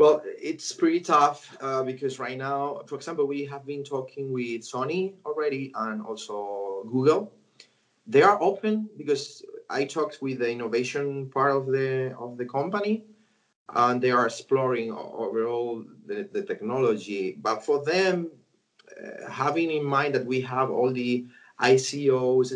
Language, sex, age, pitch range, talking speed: English, male, 30-49, 125-210 Hz, 145 wpm